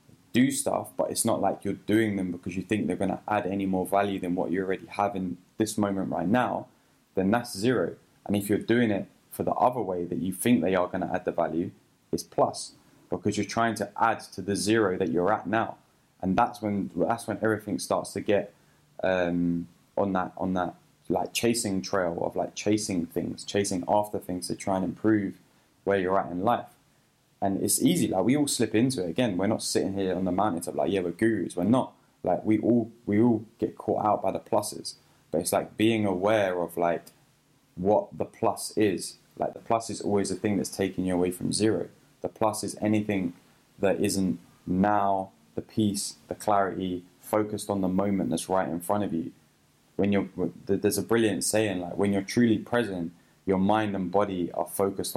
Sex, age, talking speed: male, 10-29, 210 wpm